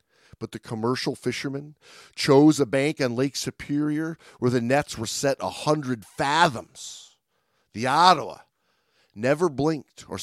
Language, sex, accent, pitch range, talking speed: English, male, American, 115-145 Hz, 135 wpm